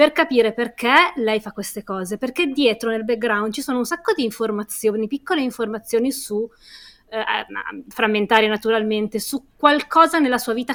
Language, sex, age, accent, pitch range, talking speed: Italian, female, 20-39, native, 225-310 Hz, 155 wpm